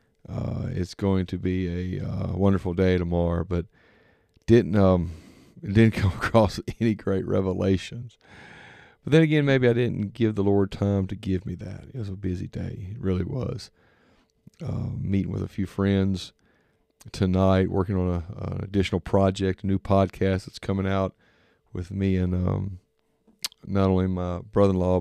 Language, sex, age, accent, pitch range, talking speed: English, male, 40-59, American, 90-105 Hz, 165 wpm